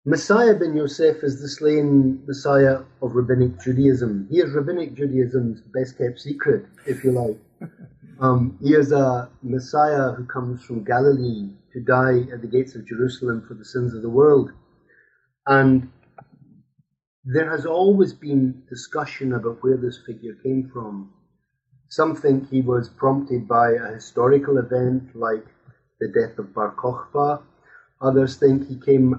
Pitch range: 115-140 Hz